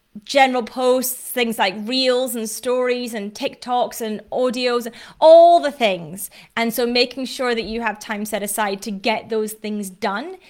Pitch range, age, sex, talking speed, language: 200-245 Hz, 30-49, female, 165 wpm, English